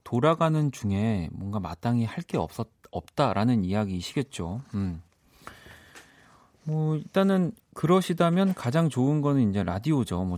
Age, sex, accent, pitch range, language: 40-59, male, native, 95-135 Hz, Korean